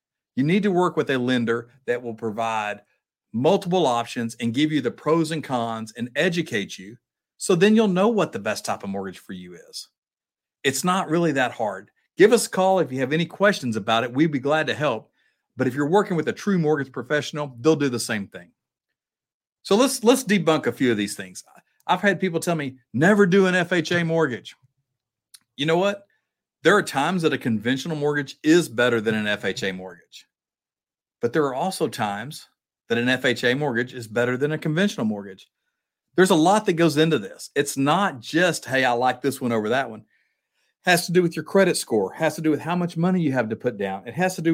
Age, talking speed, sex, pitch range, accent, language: 50-69, 220 wpm, male, 125-180 Hz, American, English